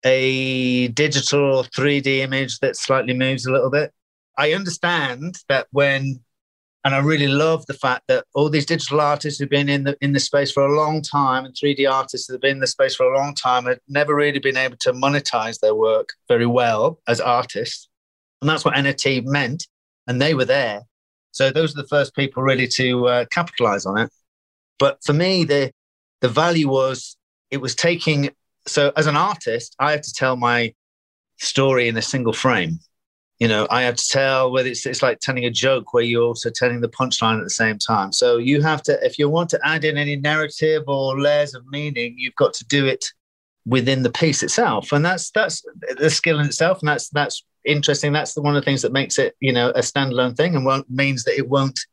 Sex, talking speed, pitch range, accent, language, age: male, 215 wpm, 125-150 Hz, British, English, 40-59